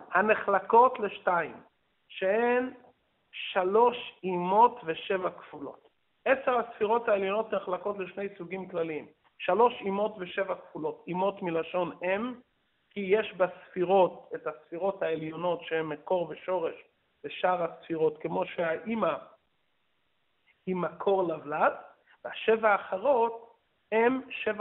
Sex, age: male, 50-69